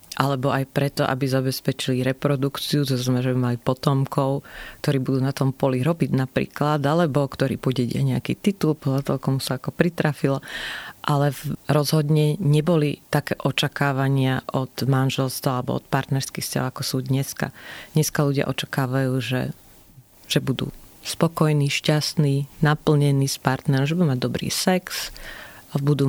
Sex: female